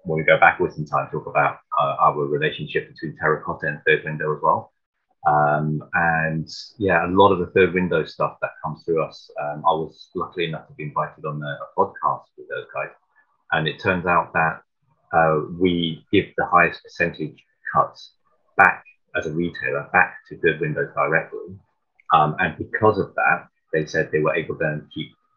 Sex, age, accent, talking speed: male, 30-49, British, 190 wpm